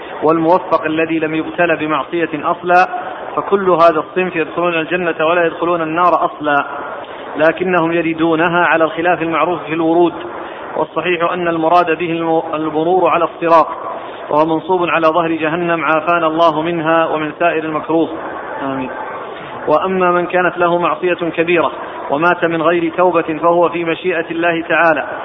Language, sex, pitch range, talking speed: Arabic, male, 160-175 Hz, 135 wpm